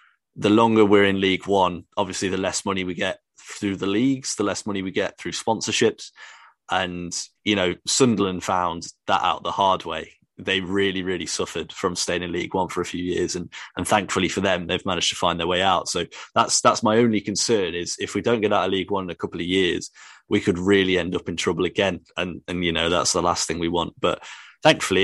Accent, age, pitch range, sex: British, 20-39, 90-115 Hz, male